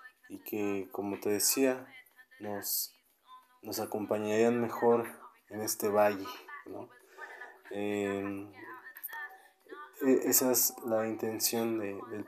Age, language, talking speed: 20-39, English, 100 wpm